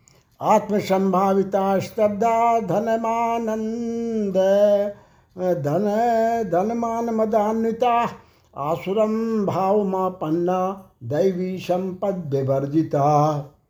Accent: native